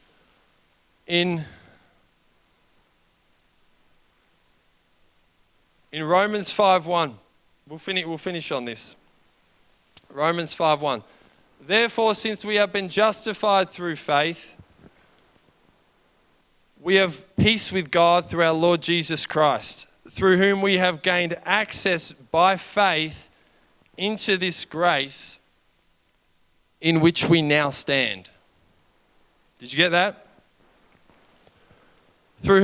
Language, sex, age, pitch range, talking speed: English, male, 20-39, 135-195 Hz, 95 wpm